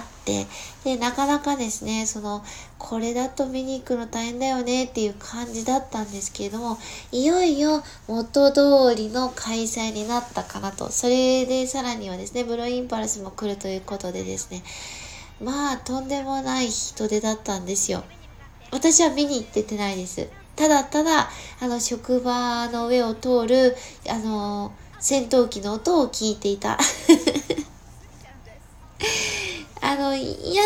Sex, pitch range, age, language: female, 215-285 Hz, 20-39, Japanese